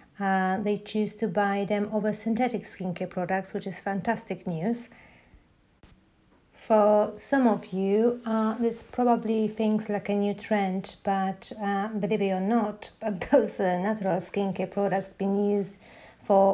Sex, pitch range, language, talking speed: female, 185-215 Hz, English, 150 wpm